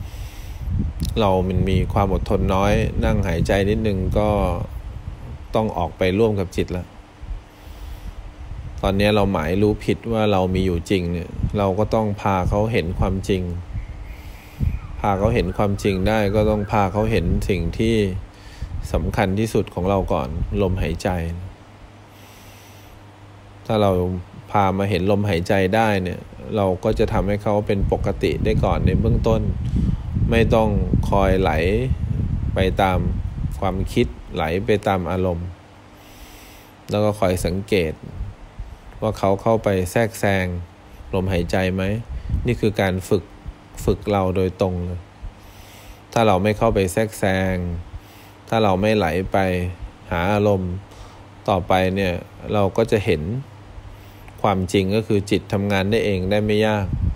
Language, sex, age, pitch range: English, male, 20-39, 95-105 Hz